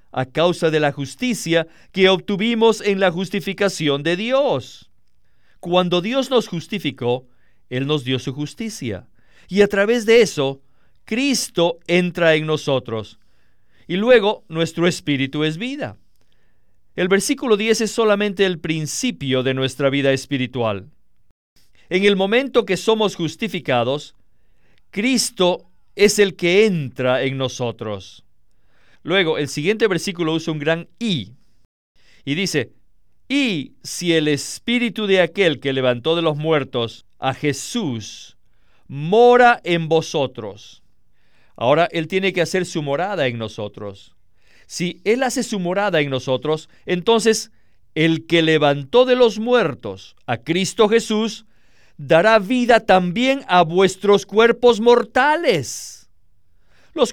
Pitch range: 130-210 Hz